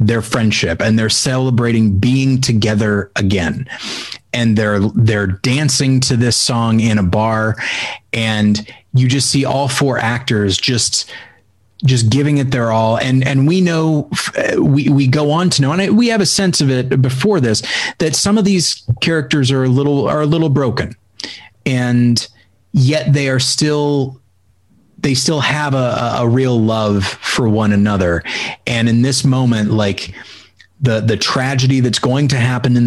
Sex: male